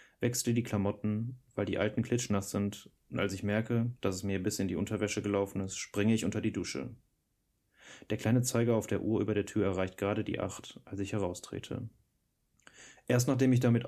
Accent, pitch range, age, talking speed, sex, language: German, 100-115 Hz, 30-49, 200 wpm, male, German